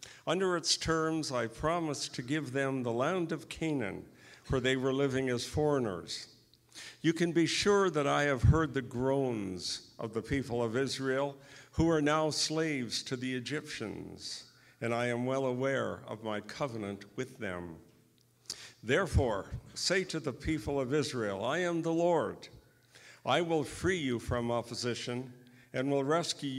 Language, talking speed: English, 160 wpm